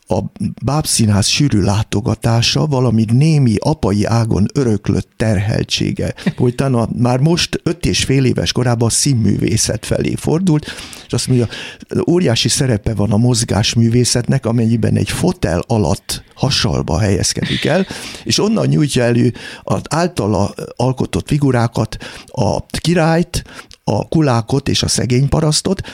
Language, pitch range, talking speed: Hungarian, 115-150 Hz, 125 wpm